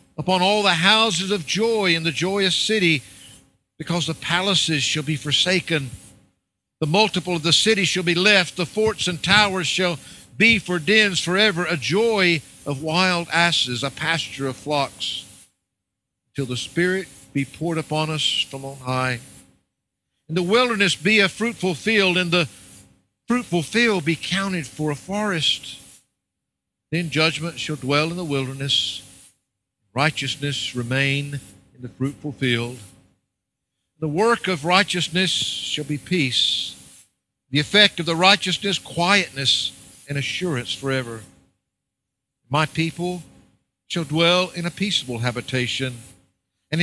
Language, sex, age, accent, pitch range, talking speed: English, male, 60-79, American, 130-180 Hz, 135 wpm